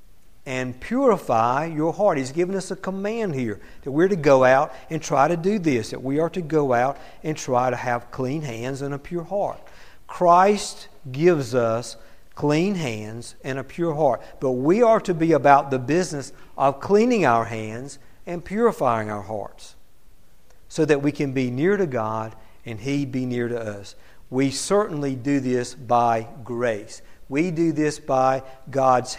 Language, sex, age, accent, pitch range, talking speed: English, male, 50-69, American, 115-150 Hz, 175 wpm